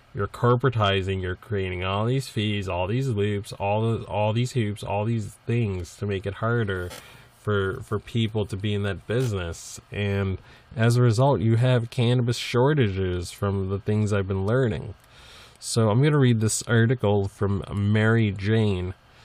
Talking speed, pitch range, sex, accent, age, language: 170 wpm, 105-130 Hz, male, American, 20-39, English